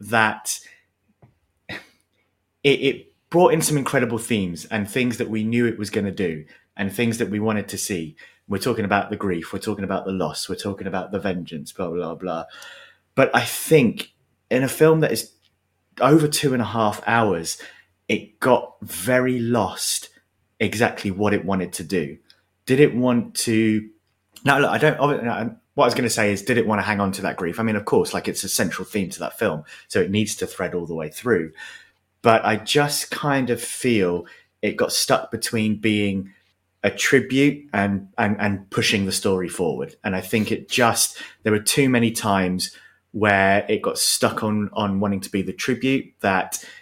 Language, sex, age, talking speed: English, male, 30-49, 195 wpm